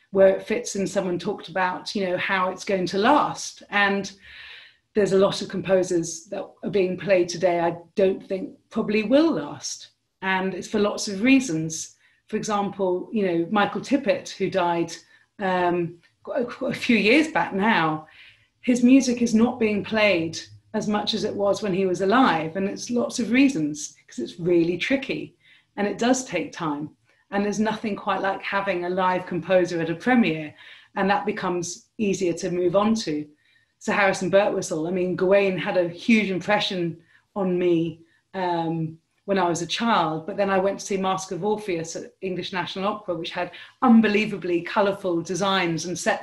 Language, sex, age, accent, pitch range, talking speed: English, female, 40-59, British, 175-210 Hz, 180 wpm